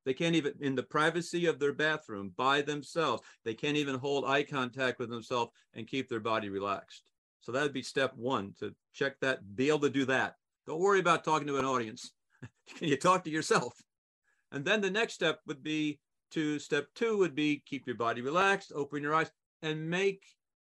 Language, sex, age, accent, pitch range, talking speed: English, male, 50-69, American, 125-150 Hz, 205 wpm